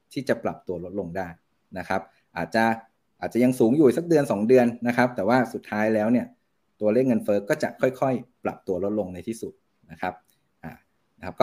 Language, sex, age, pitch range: Thai, male, 20-39, 105-130 Hz